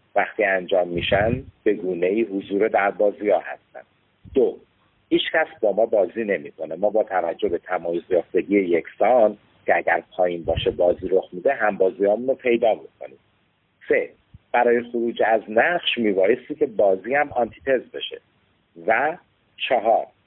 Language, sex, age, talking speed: Persian, male, 50-69, 145 wpm